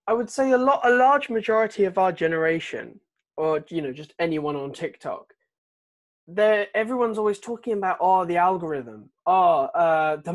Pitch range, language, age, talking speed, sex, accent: 145-205 Hz, English, 20-39, 160 wpm, male, British